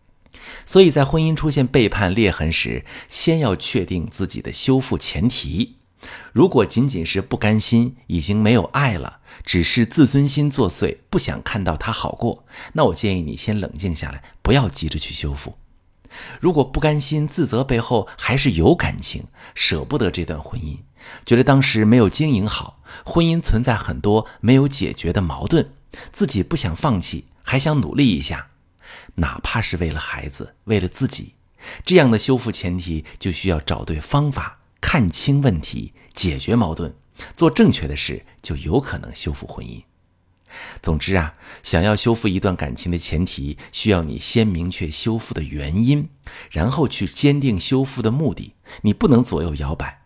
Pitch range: 85-125 Hz